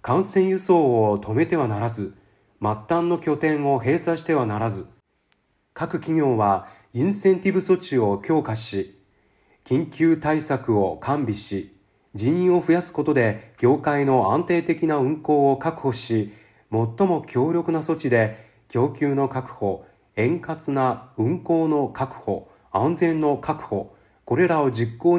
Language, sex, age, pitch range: Japanese, male, 40-59, 110-165 Hz